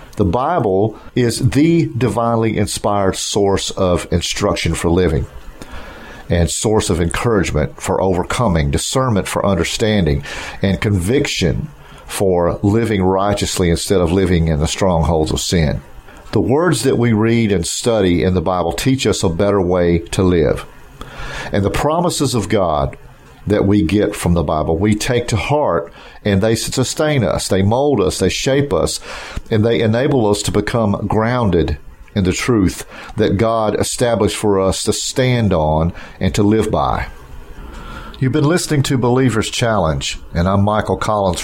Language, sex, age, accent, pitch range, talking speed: English, male, 50-69, American, 90-115 Hz, 155 wpm